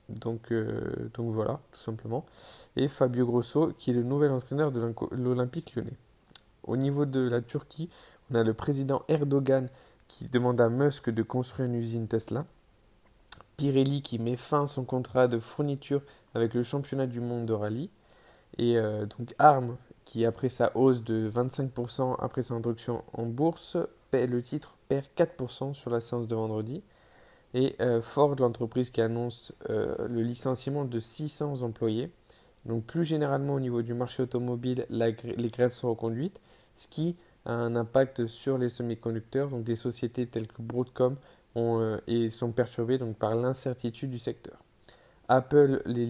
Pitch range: 115-135 Hz